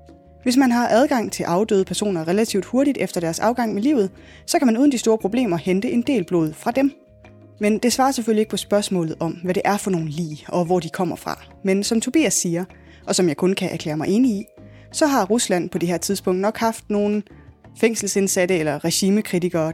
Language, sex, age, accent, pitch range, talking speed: Danish, female, 20-39, native, 170-225 Hz, 220 wpm